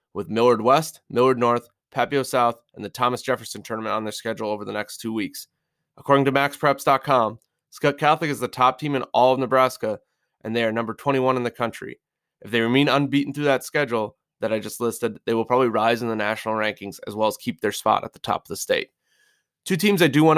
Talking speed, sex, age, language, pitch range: 225 wpm, male, 20-39, English, 115-140 Hz